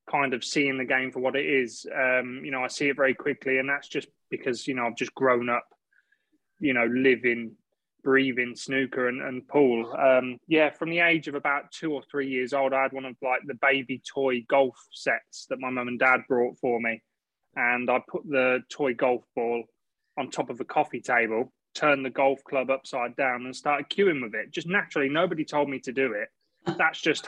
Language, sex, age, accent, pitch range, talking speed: English, male, 20-39, British, 125-140 Hz, 220 wpm